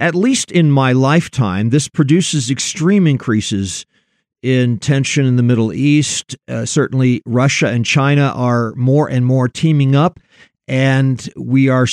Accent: American